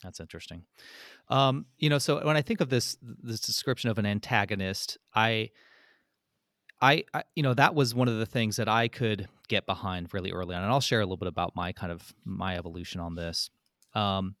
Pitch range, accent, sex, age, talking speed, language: 100-125 Hz, American, male, 30-49, 210 wpm, English